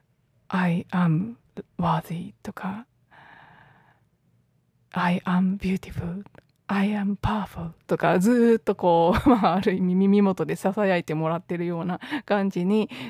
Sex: female